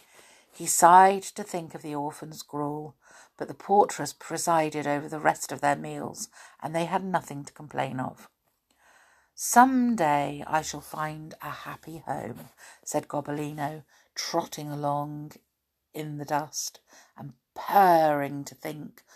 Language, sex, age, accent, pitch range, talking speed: English, female, 50-69, British, 145-200 Hz, 140 wpm